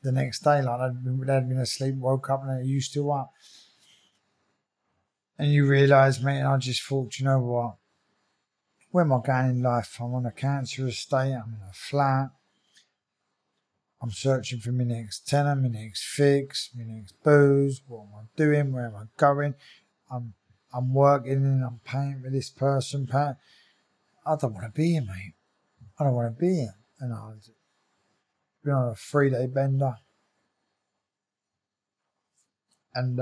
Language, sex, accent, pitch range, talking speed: English, male, British, 120-140 Hz, 165 wpm